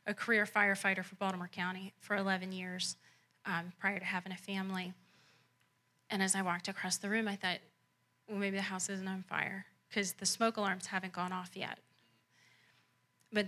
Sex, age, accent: female, 30-49, American